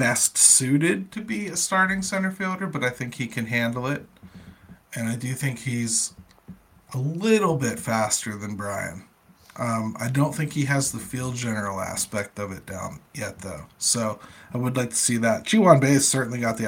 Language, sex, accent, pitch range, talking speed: English, male, American, 110-130 Hz, 195 wpm